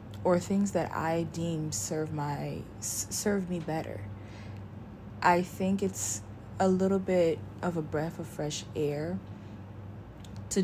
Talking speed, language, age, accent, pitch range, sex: 130 wpm, English, 20-39, American, 105-170 Hz, female